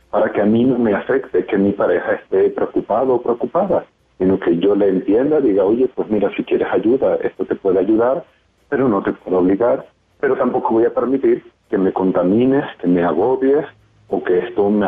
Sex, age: male, 40-59